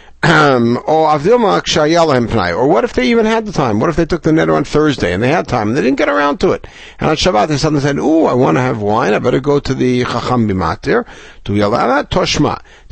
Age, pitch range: 60-79, 115-165 Hz